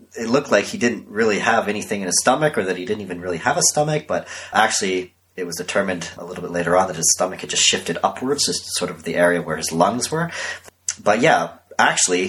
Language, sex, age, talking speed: English, male, 30-49, 240 wpm